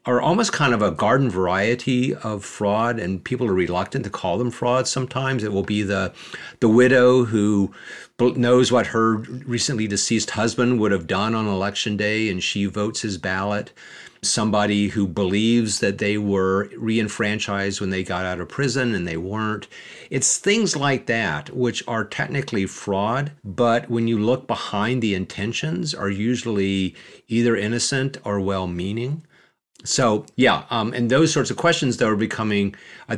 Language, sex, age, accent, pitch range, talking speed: English, male, 50-69, American, 95-120 Hz, 165 wpm